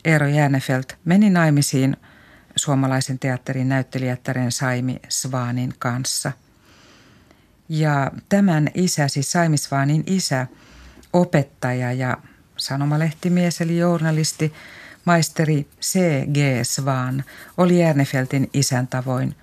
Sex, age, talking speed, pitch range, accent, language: female, 50-69, 90 wpm, 130-150 Hz, native, Finnish